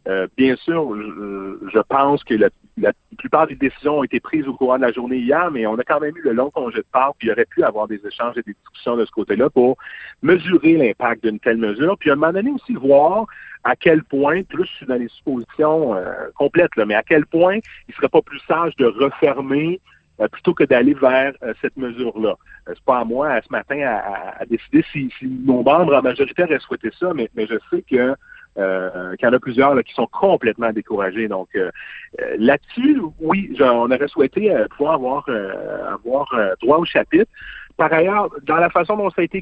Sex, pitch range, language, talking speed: male, 125-180 Hz, French, 225 wpm